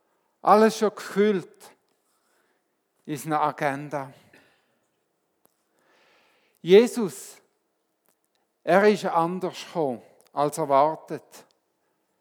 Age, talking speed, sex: 50-69, 65 wpm, male